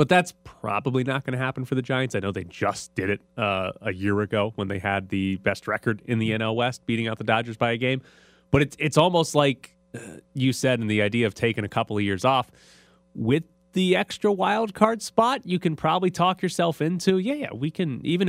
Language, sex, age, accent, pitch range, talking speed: English, male, 30-49, American, 105-155 Hz, 235 wpm